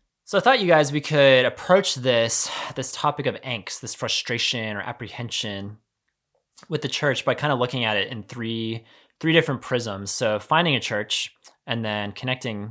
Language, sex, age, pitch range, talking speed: English, male, 20-39, 105-135 Hz, 180 wpm